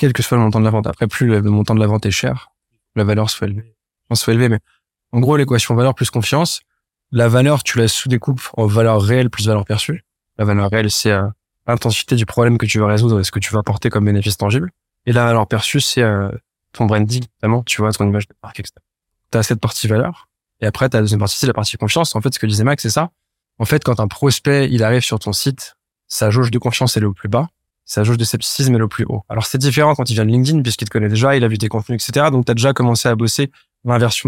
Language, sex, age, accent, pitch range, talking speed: French, male, 20-39, French, 110-130 Hz, 270 wpm